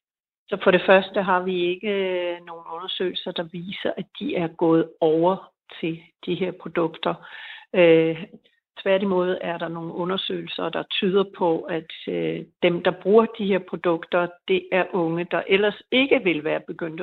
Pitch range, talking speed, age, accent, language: 170-200 Hz, 165 wpm, 60-79, native, Danish